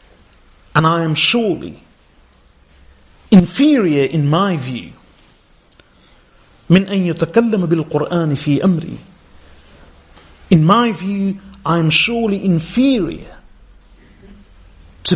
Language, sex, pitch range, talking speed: English, male, 120-170 Hz, 65 wpm